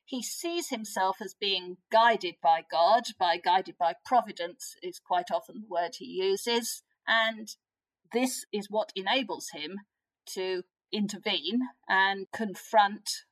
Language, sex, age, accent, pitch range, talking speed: English, female, 50-69, British, 185-250 Hz, 130 wpm